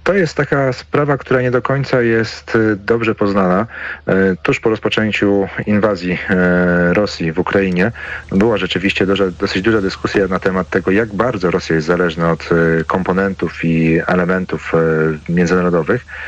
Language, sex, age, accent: Polish, male, 40-59, native